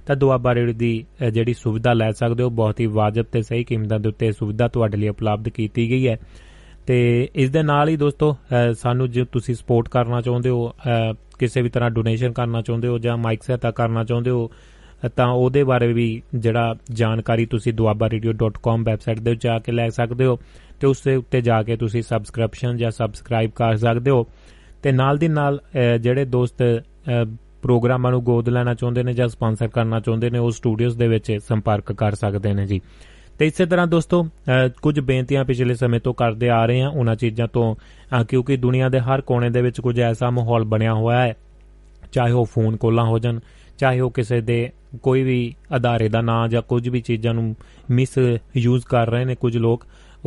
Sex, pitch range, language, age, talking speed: male, 115-125 Hz, Punjabi, 30-49, 130 wpm